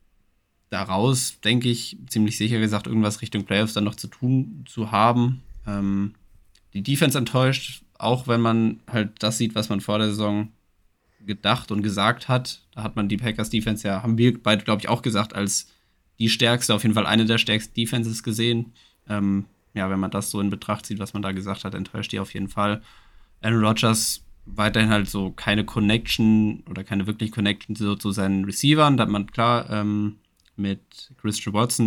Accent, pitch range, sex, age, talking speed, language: German, 95-110 Hz, male, 20-39, 190 wpm, German